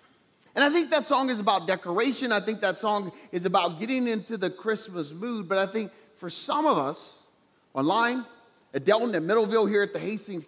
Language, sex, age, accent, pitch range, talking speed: English, male, 30-49, American, 170-240 Hz, 200 wpm